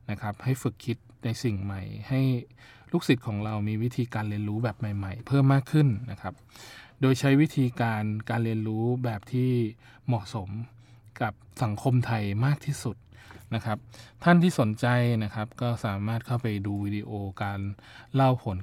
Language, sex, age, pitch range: Thai, male, 20-39, 110-125 Hz